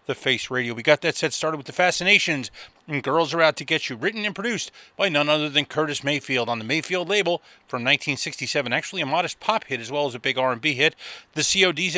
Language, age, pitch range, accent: English, 30-49, 130-175 Hz, American